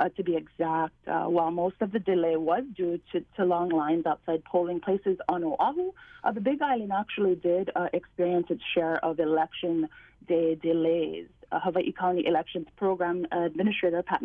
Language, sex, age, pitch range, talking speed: English, female, 30-49, 165-200 Hz, 175 wpm